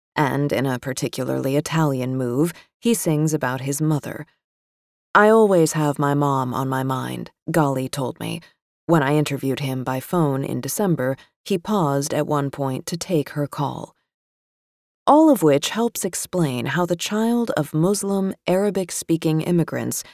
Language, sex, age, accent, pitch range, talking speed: English, female, 30-49, American, 140-180 Hz, 150 wpm